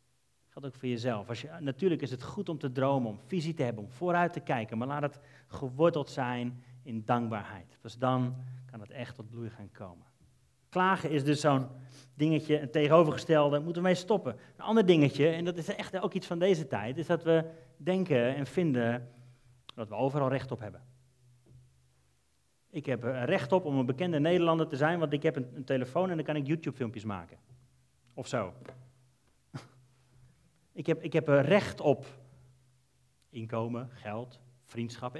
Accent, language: Dutch, Dutch